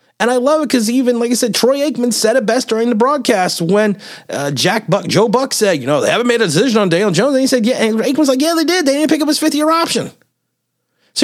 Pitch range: 150-240 Hz